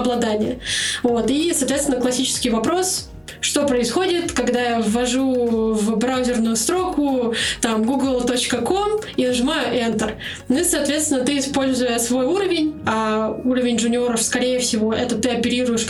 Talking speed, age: 130 wpm, 20-39